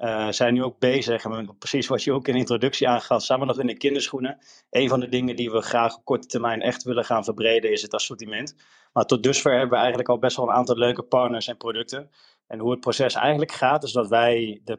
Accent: Dutch